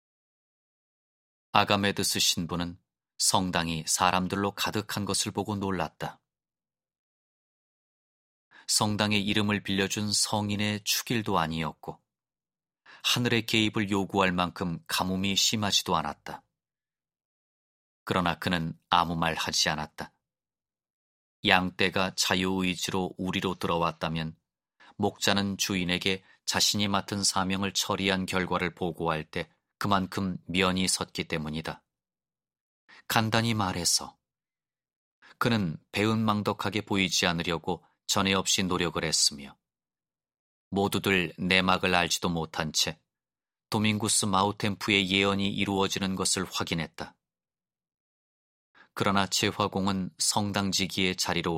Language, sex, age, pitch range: Korean, male, 30-49, 85-100 Hz